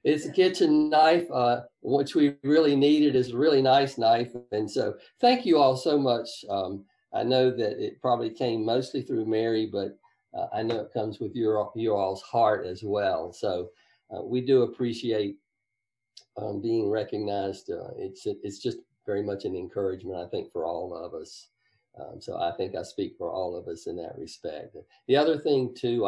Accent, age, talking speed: American, 50-69, 190 wpm